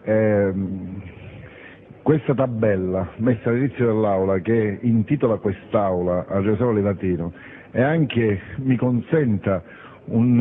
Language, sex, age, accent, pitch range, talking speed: Italian, male, 50-69, native, 95-125 Hz, 100 wpm